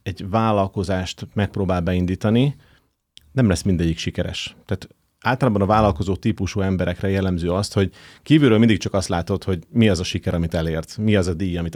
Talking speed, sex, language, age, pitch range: 175 wpm, male, Hungarian, 30-49, 90-110 Hz